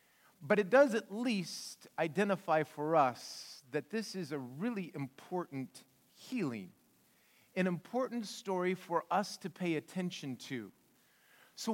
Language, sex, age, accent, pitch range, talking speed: English, male, 40-59, American, 160-205 Hz, 130 wpm